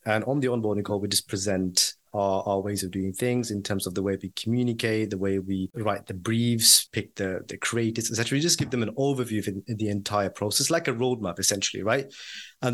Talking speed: 230 wpm